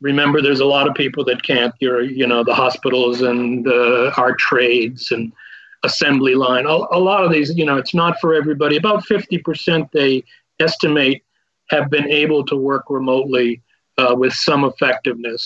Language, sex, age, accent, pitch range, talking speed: English, male, 40-59, American, 125-155 Hz, 165 wpm